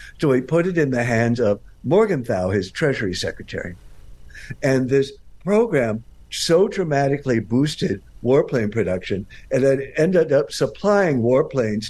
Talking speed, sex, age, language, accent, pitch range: 130 wpm, male, 60-79, English, American, 110-145 Hz